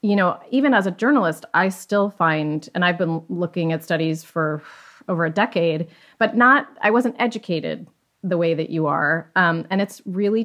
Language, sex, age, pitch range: English, female, 30-49, 175-225 Hz